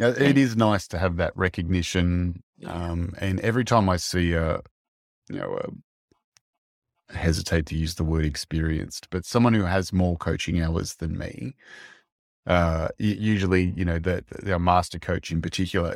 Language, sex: English, male